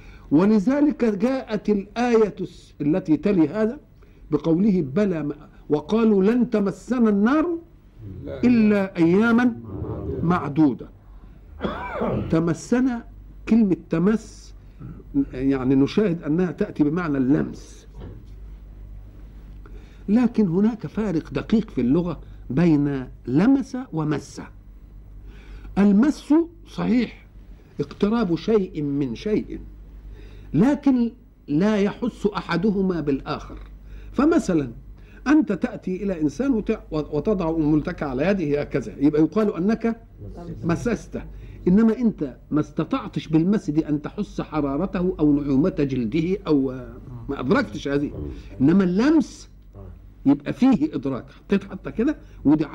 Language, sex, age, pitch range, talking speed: Arabic, male, 50-69, 140-215 Hz, 95 wpm